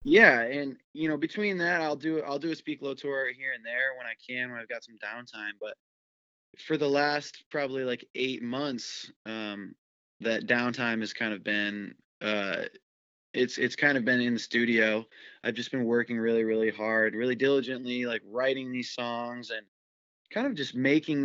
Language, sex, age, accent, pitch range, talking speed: English, male, 20-39, American, 115-140 Hz, 190 wpm